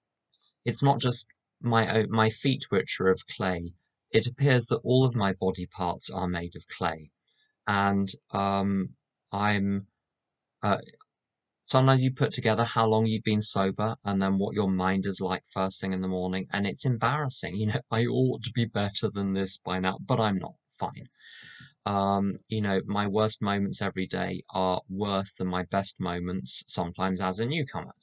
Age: 20-39